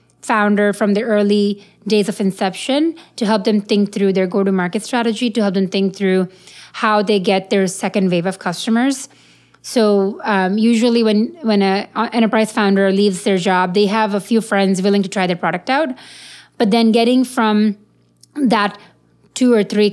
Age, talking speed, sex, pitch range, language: 30-49, 180 wpm, female, 190-225 Hz, English